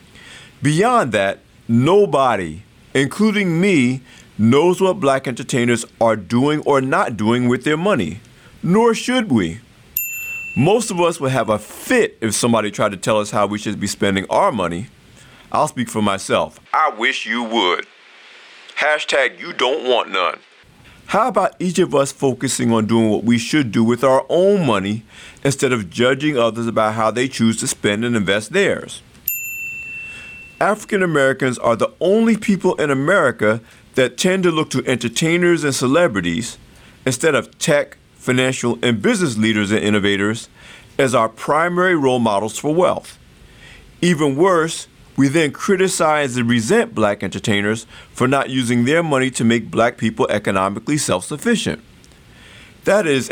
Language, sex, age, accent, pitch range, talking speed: English, male, 50-69, American, 110-150 Hz, 150 wpm